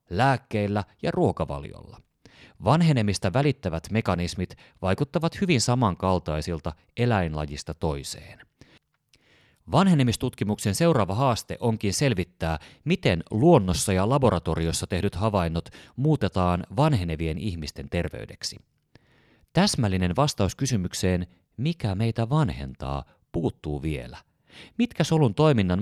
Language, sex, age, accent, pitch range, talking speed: Finnish, male, 30-49, native, 90-135 Hz, 85 wpm